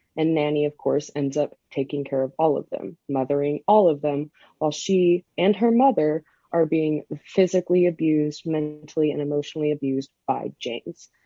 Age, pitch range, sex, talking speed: 20-39, 145-180 Hz, female, 165 wpm